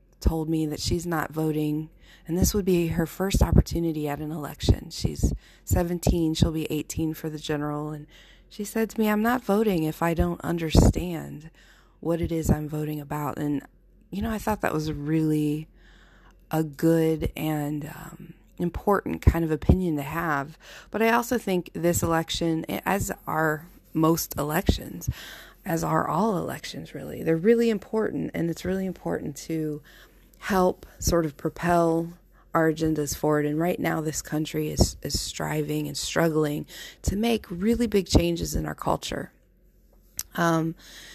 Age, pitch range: 20-39, 155-175 Hz